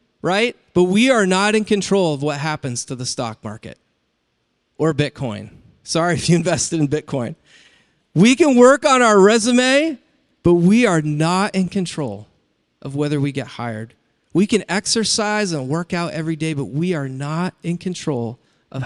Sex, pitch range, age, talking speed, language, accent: male, 145-215 Hz, 40-59, 170 wpm, English, American